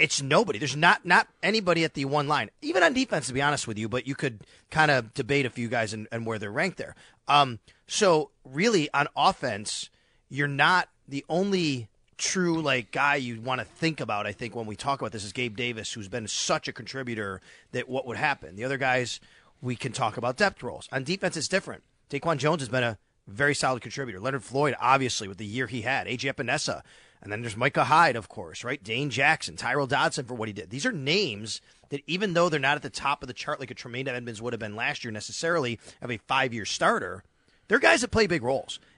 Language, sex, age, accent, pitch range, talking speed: English, male, 30-49, American, 120-155 Hz, 230 wpm